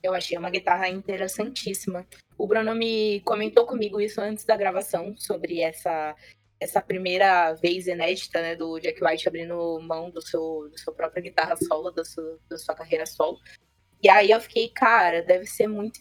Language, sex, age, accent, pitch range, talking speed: Portuguese, female, 20-39, Brazilian, 170-225 Hz, 170 wpm